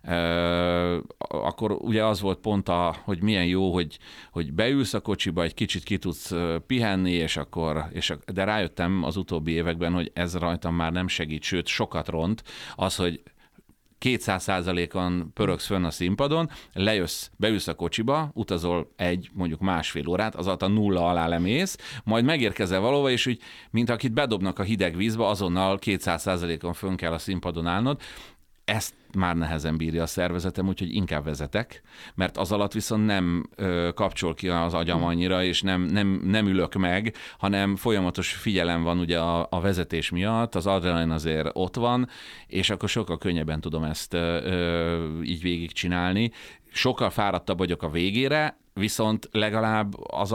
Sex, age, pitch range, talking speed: male, 40-59, 85-105 Hz, 160 wpm